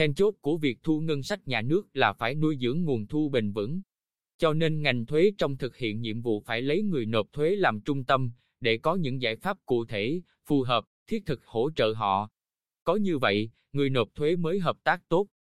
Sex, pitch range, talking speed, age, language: male, 120-155 Hz, 225 wpm, 20-39, Vietnamese